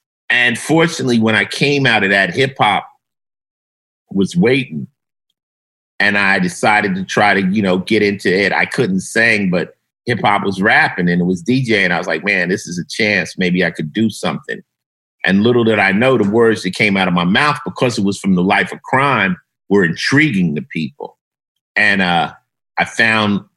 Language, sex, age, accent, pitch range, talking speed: English, male, 50-69, American, 95-125 Hz, 195 wpm